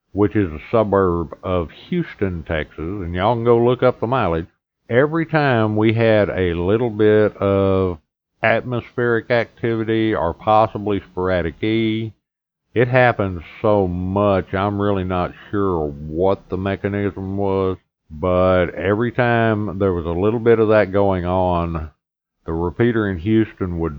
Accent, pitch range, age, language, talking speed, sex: American, 85-110 Hz, 50-69, English, 145 wpm, male